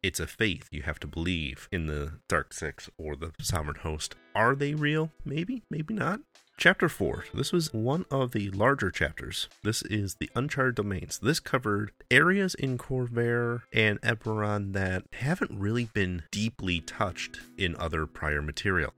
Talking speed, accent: 165 wpm, American